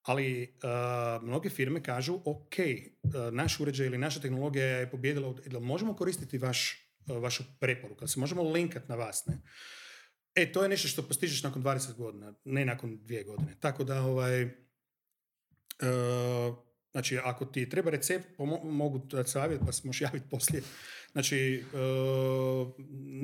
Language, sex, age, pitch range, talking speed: Croatian, male, 40-59, 125-140 Hz, 150 wpm